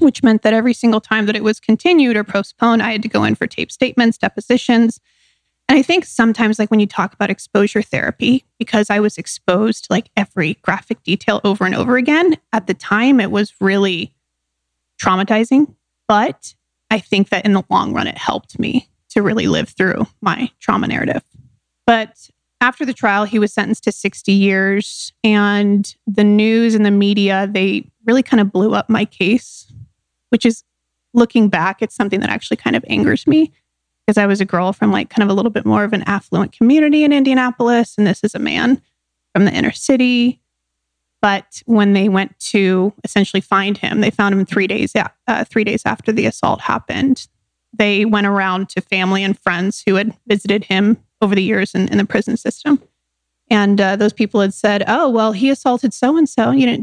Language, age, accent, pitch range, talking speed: English, 30-49, American, 200-235 Hz, 195 wpm